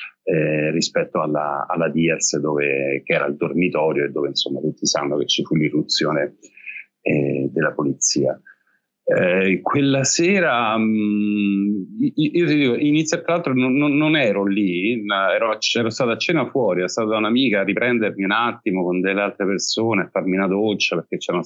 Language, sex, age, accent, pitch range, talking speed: Italian, male, 40-59, native, 85-105 Hz, 165 wpm